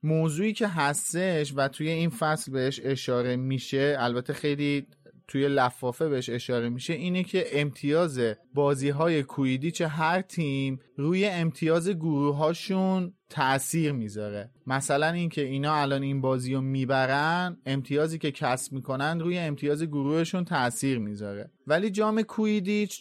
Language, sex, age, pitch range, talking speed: Persian, male, 30-49, 135-175 Hz, 135 wpm